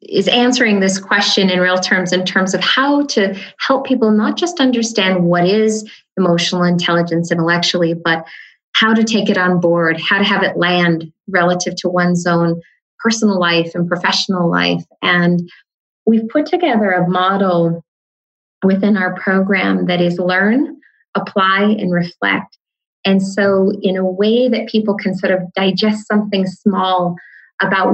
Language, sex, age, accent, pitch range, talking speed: English, female, 30-49, American, 180-215 Hz, 155 wpm